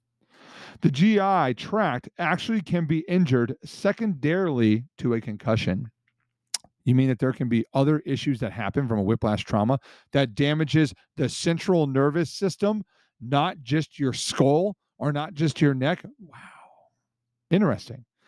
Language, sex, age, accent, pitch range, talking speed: English, male, 40-59, American, 120-160 Hz, 140 wpm